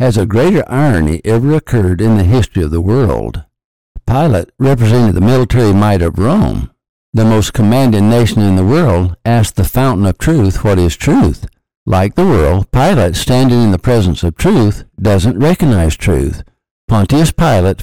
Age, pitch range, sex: 60-79, 95-125 Hz, male